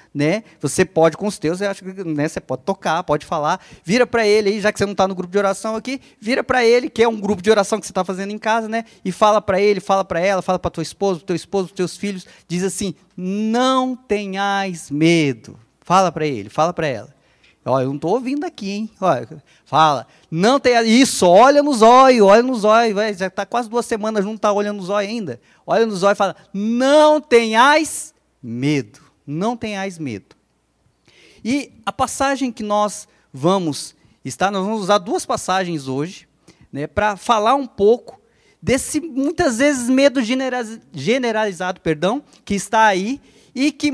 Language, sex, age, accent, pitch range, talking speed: Portuguese, male, 20-39, Brazilian, 170-230 Hz, 195 wpm